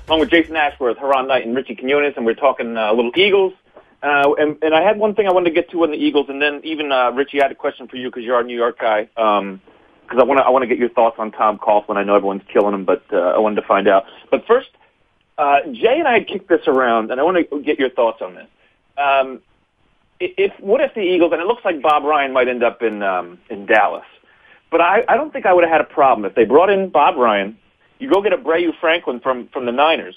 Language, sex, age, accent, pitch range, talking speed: English, male, 40-59, American, 125-175 Hz, 275 wpm